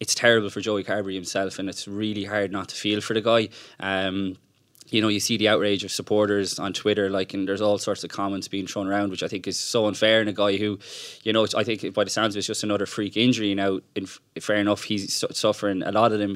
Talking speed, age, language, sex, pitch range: 265 wpm, 20-39, English, male, 100-110 Hz